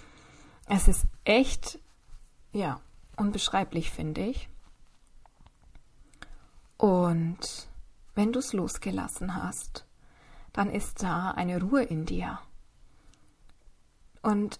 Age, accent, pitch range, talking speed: 20-39, German, 185-235 Hz, 85 wpm